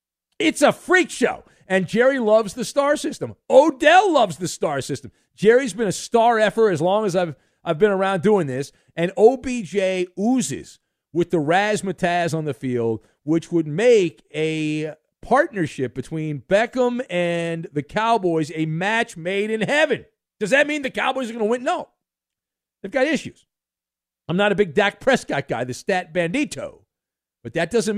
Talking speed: 170 wpm